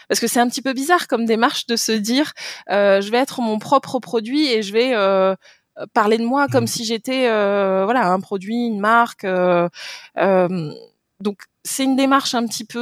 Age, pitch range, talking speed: 20-39, 190-240 Hz, 205 wpm